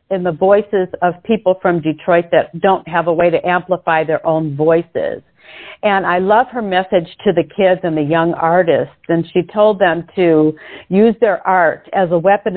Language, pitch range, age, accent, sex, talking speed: English, 170-210 Hz, 50-69, American, female, 190 wpm